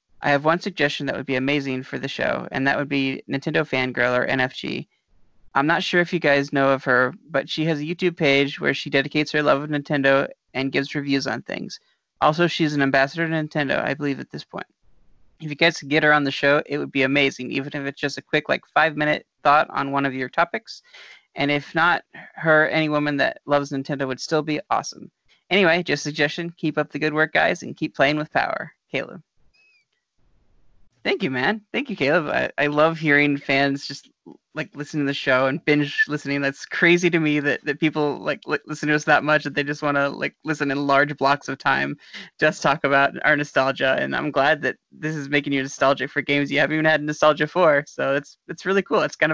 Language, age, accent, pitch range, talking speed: English, 30-49, American, 140-155 Hz, 230 wpm